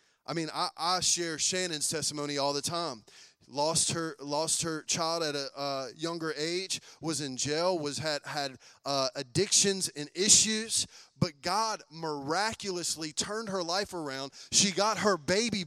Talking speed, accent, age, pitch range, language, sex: 155 wpm, American, 30-49, 170-230 Hz, English, male